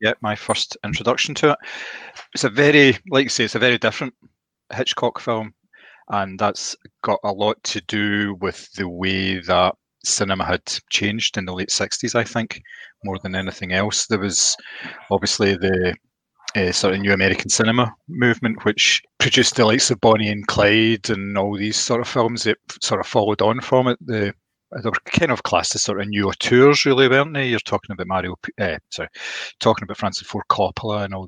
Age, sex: 30-49, male